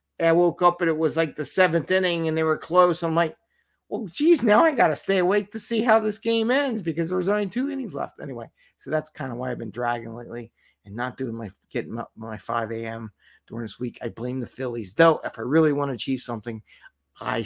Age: 50-69